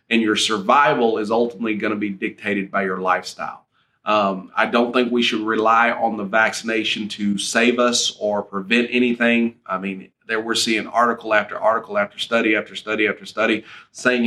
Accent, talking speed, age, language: American, 175 wpm, 30-49, English